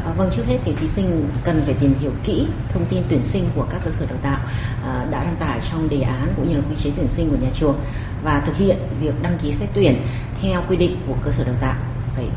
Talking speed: 260 wpm